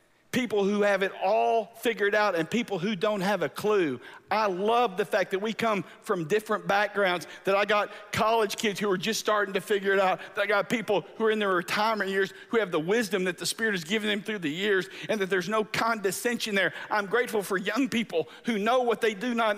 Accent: American